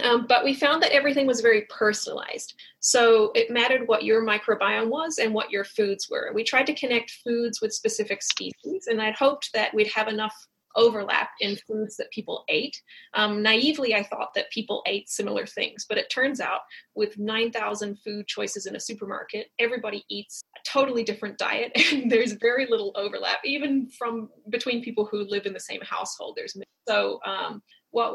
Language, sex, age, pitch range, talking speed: English, female, 30-49, 205-245 Hz, 185 wpm